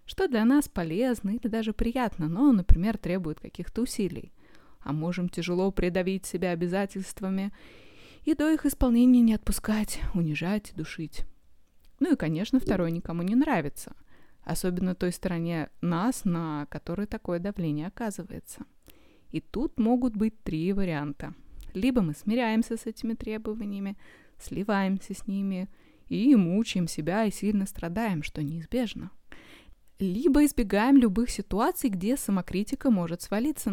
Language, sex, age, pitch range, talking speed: Russian, female, 20-39, 175-230 Hz, 130 wpm